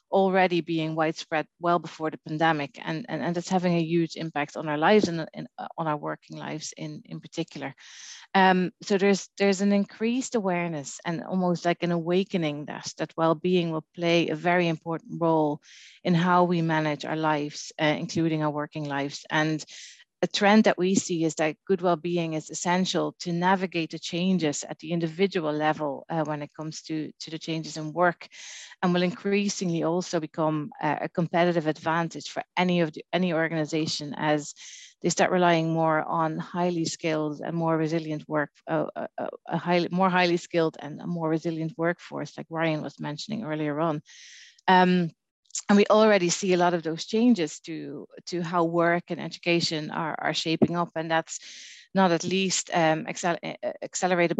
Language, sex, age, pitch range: English, female, 30-49, 155-180 Hz